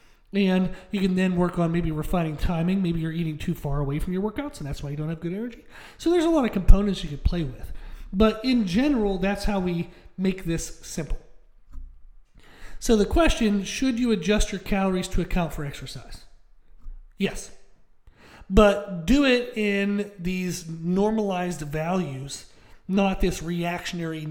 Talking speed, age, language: 170 wpm, 40-59, English